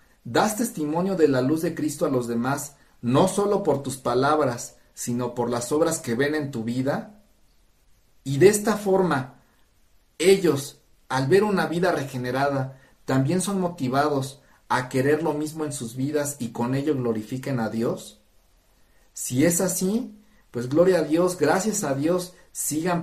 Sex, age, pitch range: male, 50-69, 115-150 Hz